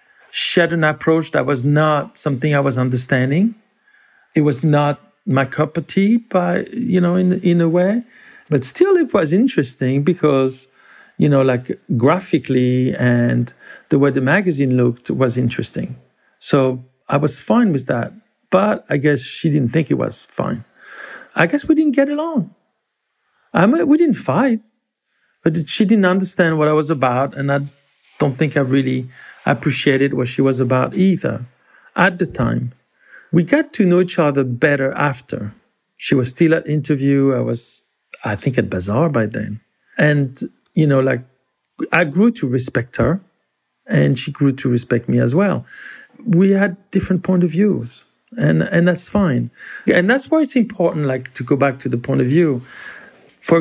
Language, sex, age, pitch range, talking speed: English, male, 50-69, 130-185 Hz, 170 wpm